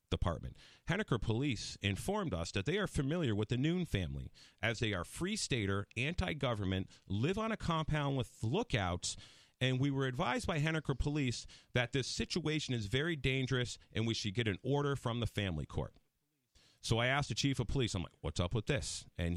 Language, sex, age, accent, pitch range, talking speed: English, male, 40-59, American, 90-125 Hz, 190 wpm